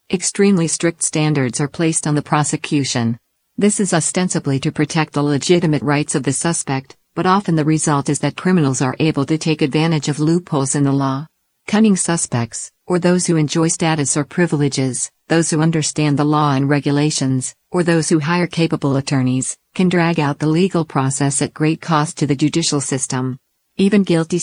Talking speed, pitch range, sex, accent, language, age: 180 wpm, 140-165 Hz, female, American, English, 50-69